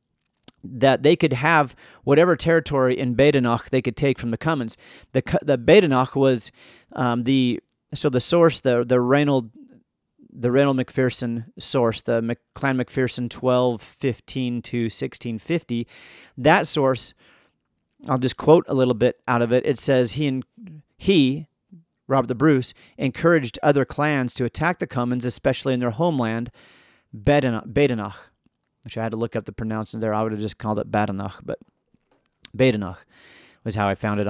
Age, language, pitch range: 40-59, English, 115-140 Hz